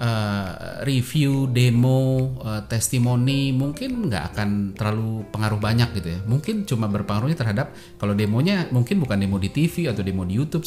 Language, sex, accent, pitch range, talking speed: Indonesian, male, native, 100-135 Hz, 145 wpm